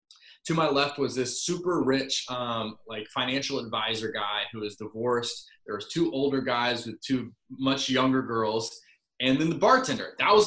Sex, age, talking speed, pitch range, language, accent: male, 20-39, 180 wpm, 120-165 Hz, English, American